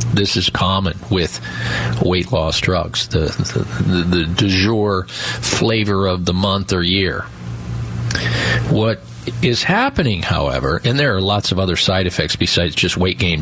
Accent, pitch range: American, 95-125 Hz